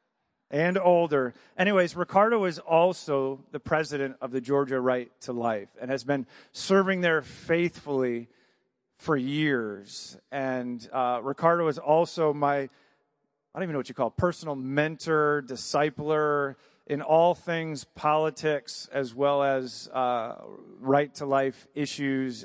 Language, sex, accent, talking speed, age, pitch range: English, male, American, 135 wpm, 40-59, 135-155 Hz